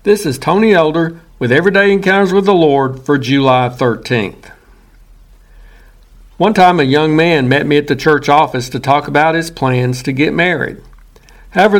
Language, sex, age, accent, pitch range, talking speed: English, male, 60-79, American, 130-165 Hz, 170 wpm